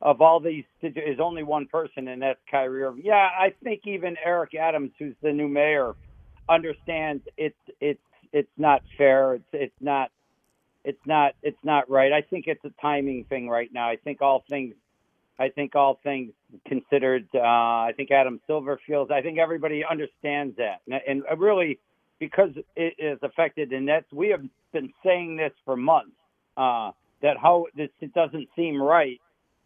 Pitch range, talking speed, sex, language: 135-165 Hz, 170 wpm, male, English